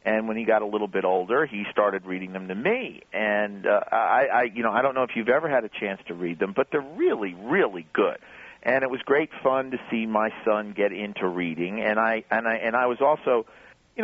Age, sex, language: 50-69, male, English